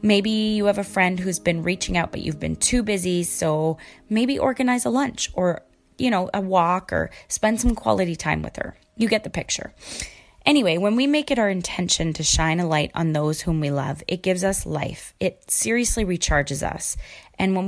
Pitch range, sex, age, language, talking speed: 160-215 Hz, female, 20-39, English, 205 wpm